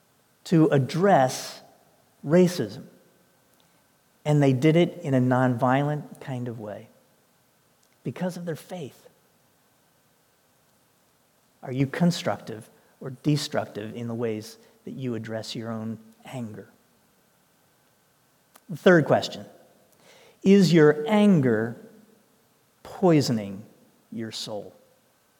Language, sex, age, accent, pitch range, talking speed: English, male, 50-69, American, 125-170 Hz, 95 wpm